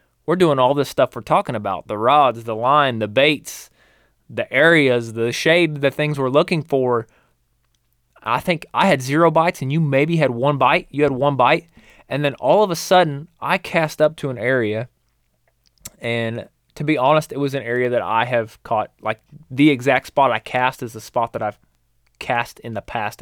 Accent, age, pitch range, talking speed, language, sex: American, 20-39, 115-150 Hz, 200 wpm, English, male